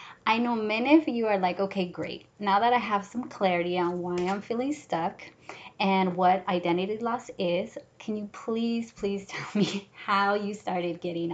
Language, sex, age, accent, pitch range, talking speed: English, female, 20-39, American, 180-210 Hz, 185 wpm